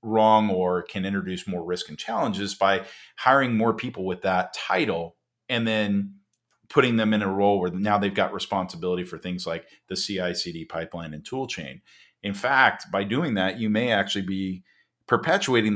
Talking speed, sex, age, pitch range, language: 175 wpm, male, 40-59, 95-115 Hz, English